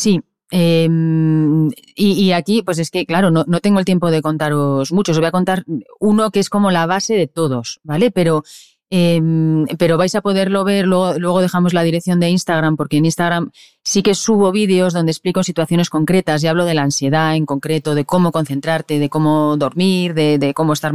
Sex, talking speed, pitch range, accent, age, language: female, 205 wpm, 160-195 Hz, Spanish, 30-49, Spanish